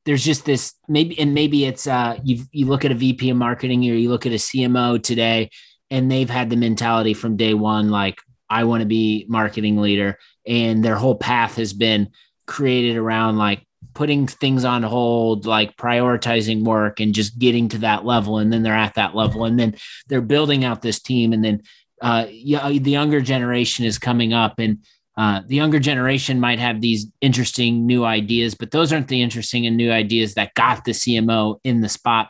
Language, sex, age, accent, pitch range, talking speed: English, male, 30-49, American, 110-125 Hz, 200 wpm